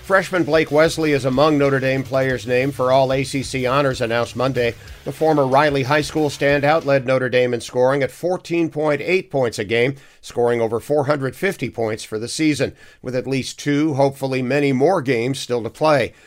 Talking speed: 175 wpm